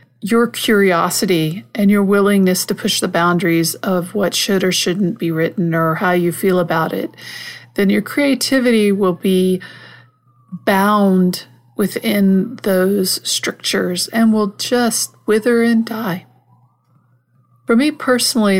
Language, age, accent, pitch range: English, 50-69, American, 170-210 Hz